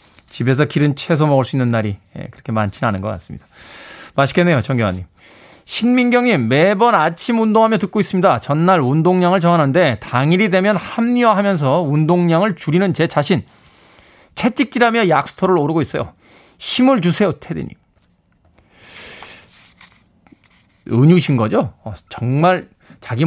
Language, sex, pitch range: Korean, male, 135-205 Hz